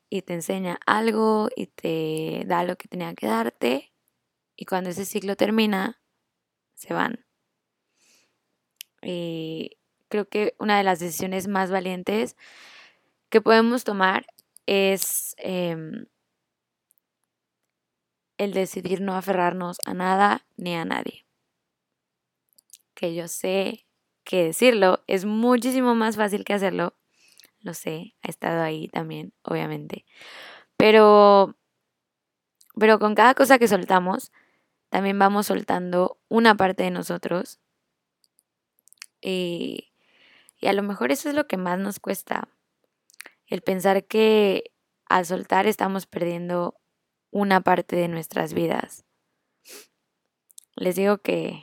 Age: 10-29